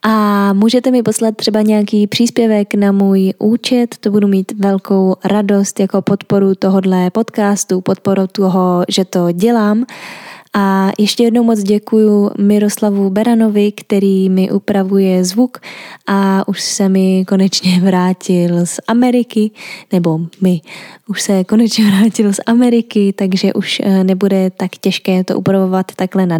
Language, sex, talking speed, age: Czech, female, 135 wpm, 20-39